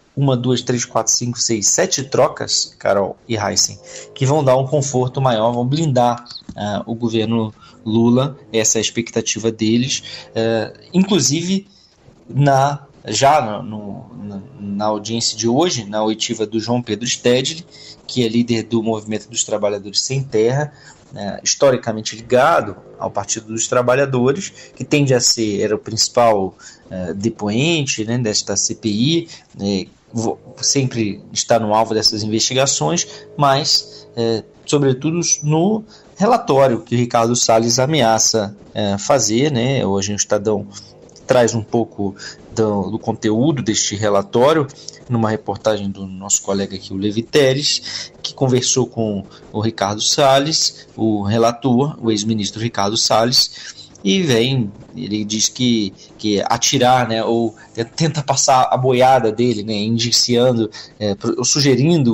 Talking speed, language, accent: 130 wpm, Portuguese, Brazilian